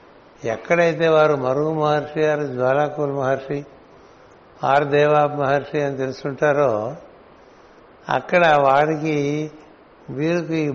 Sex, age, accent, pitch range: male, 60-79, native, 135-155 Hz